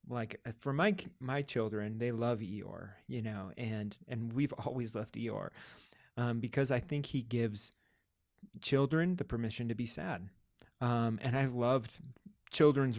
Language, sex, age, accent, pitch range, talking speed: English, male, 30-49, American, 115-135 Hz, 150 wpm